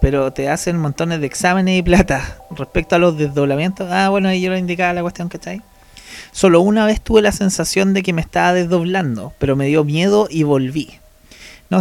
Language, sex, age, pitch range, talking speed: Spanish, male, 30-49, 145-185 Hz, 210 wpm